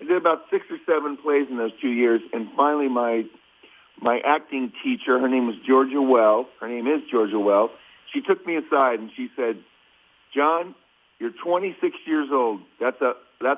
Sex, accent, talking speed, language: male, American, 175 wpm, English